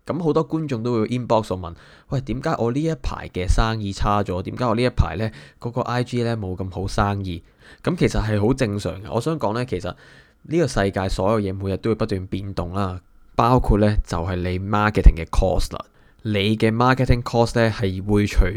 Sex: male